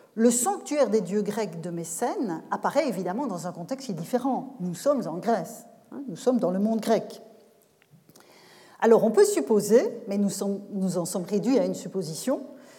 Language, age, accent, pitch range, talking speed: French, 40-59, French, 200-265 Hz, 165 wpm